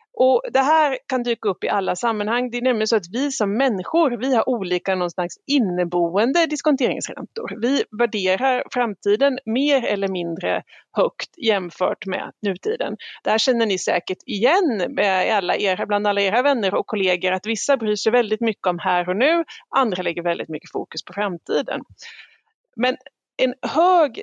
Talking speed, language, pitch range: 165 wpm, Swedish, 185-260 Hz